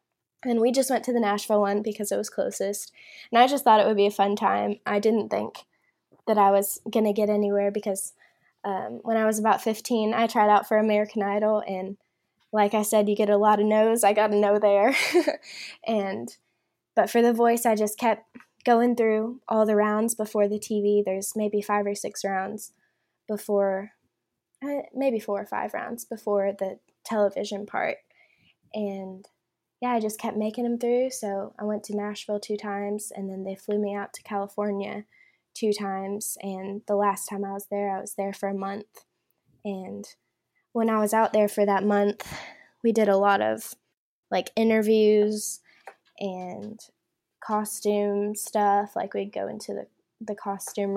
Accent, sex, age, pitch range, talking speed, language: American, female, 10-29, 200-220 Hz, 185 wpm, English